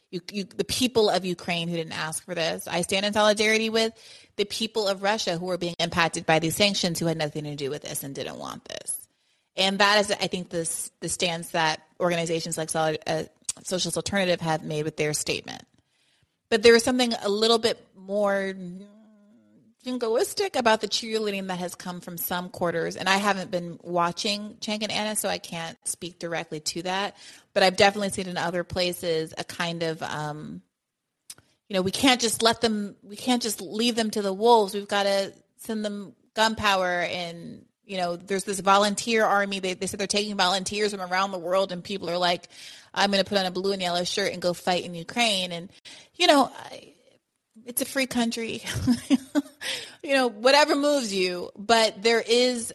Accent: American